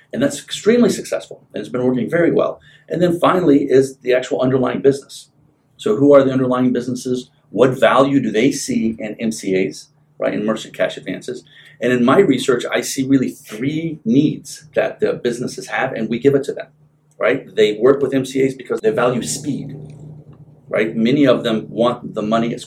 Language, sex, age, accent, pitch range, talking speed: English, male, 40-59, American, 125-155 Hz, 190 wpm